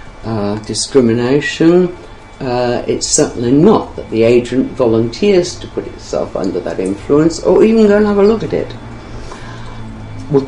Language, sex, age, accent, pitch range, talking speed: English, female, 60-79, British, 105-165 Hz, 150 wpm